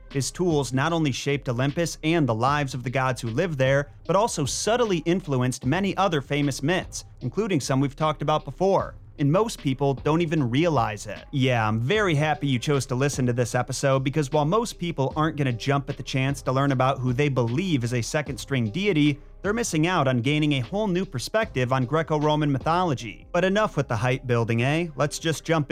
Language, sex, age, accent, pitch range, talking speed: English, male, 30-49, American, 125-160 Hz, 210 wpm